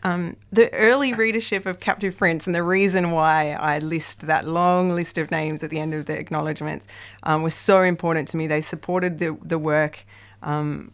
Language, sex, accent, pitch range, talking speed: English, female, Australian, 155-180 Hz, 190 wpm